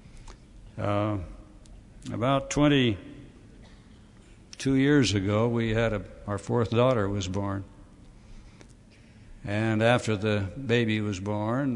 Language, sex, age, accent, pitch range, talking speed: English, male, 60-79, American, 100-120 Hz, 95 wpm